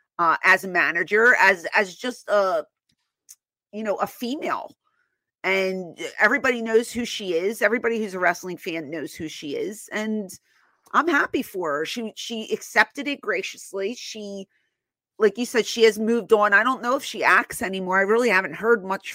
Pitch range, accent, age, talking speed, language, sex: 200-250 Hz, American, 30-49, 180 wpm, English, female